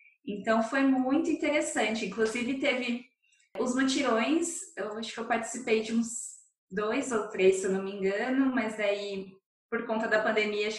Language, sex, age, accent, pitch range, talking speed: Portuguese, female, 10-29, Brazilian, 210-255 Hz, 165 wpm